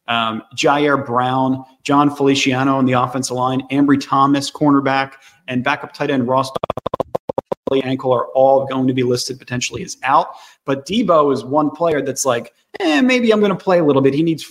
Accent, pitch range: American, 130-150 Hz